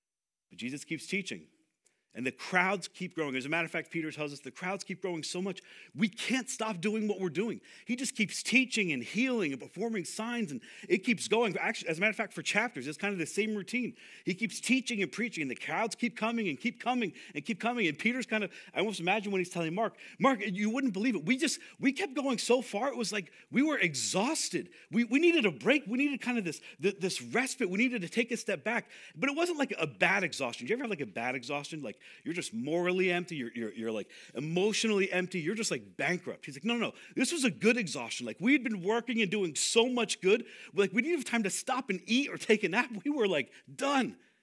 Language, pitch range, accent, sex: English, 170-235 Hz, American, male